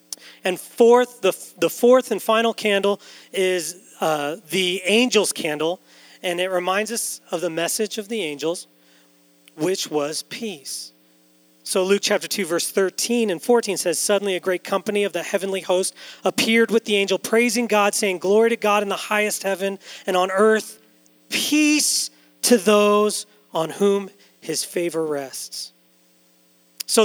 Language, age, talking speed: English, 40-59, 155 wpm